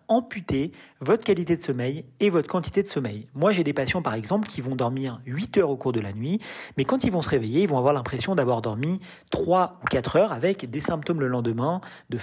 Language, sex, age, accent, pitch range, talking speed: Italian, male, 40-59, French, 135-185 Hz, 235 wpm